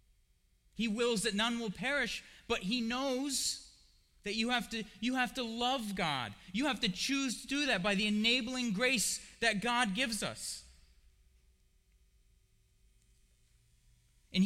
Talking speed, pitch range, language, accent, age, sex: 140 wpm, 145-200 Hz, English, American, 30-49, male